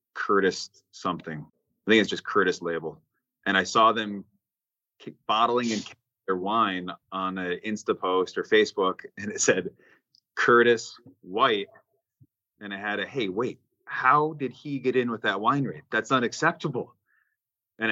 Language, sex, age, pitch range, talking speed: English, male, 30-49, 95-115 Hz, 150 wpm